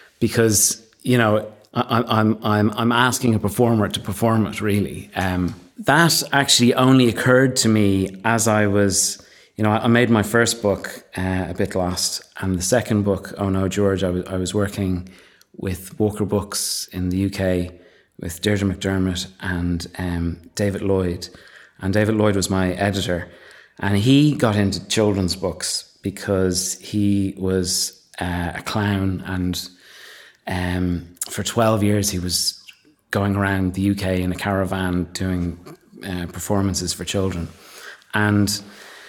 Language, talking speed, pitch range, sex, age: English, 150 wpm, 95-110 Hz, male, 30-49